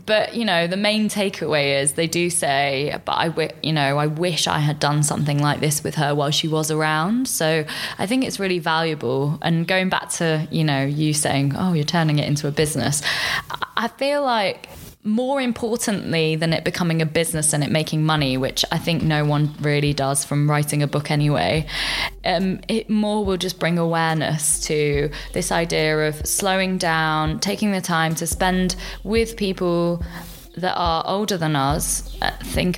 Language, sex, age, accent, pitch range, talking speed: English, female, 20-39, British, 150-180 Hz, 190 wpm